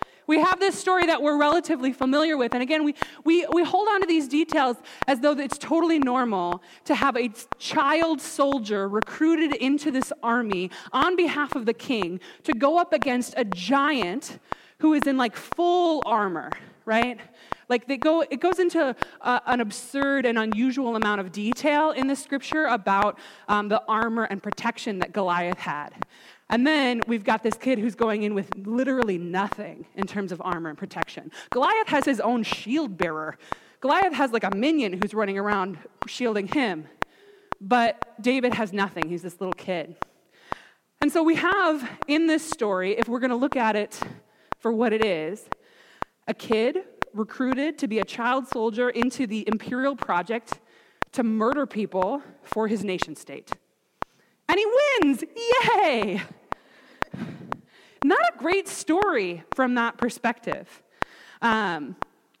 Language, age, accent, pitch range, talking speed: English, 20-39, American, 220-305 Hz, 160 wpm